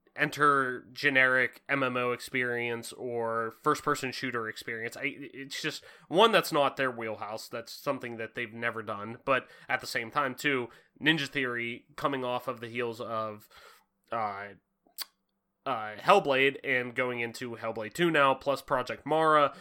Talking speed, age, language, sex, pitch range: 145 wpm, 20-39, English, male, 120-155 Hz